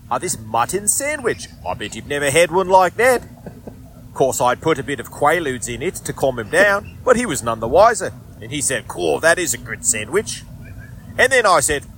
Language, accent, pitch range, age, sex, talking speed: English, Australian, 120-175 Hz, 30-49, male, 225 wpm